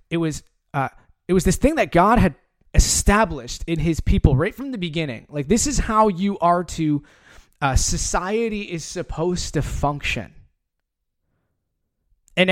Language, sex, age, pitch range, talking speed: English, male, 20-39, 140-220 Hz, 155 wpm